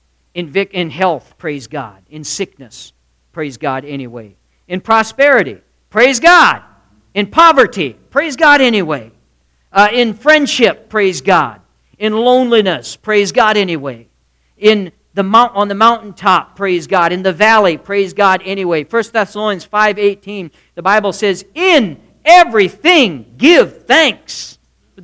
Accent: American